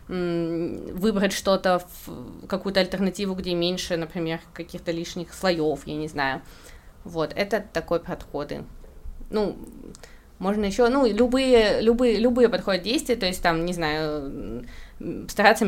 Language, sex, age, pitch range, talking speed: Russian, female, 20-39, 170-215 Hz, 125 wpm